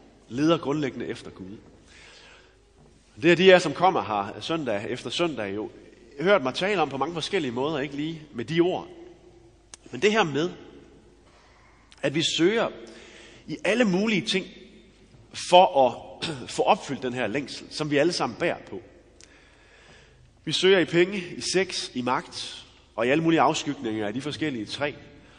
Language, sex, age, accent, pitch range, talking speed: Danish, male, 30-49, native, 125-185 Hz, 165 wpm